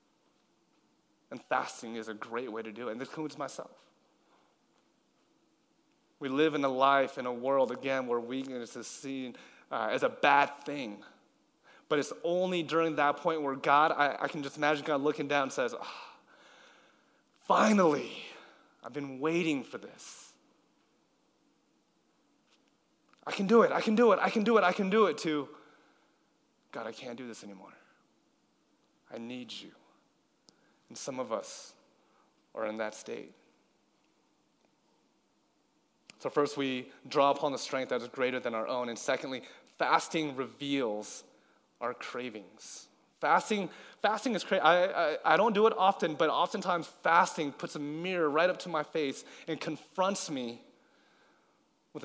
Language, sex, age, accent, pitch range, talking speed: English, male, 30-49, American, 135-170 Hz, 155 wpm